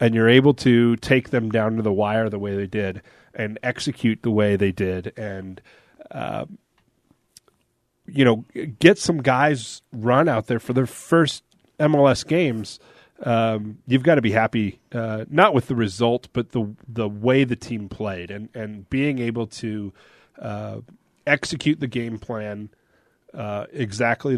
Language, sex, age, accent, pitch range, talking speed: English, male, 30-49, American, 110-125 Hz, 160 wpm